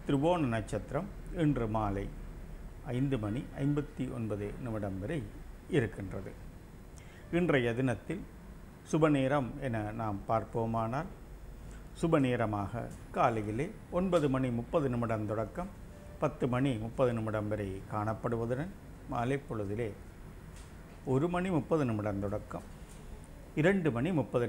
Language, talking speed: Tamil, 95 wpm